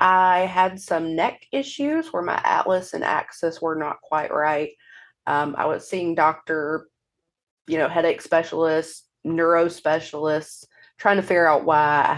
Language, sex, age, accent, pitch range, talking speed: English, female, 30-49, American, 155-190 Hz, 150 wpm